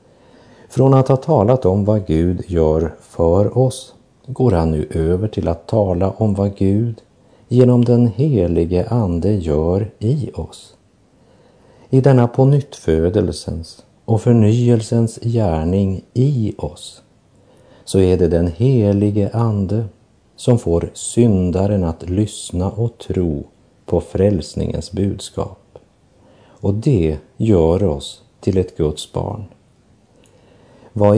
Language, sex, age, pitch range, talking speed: Swedish, male, 50-69, 85-115 Hz, 115 wpm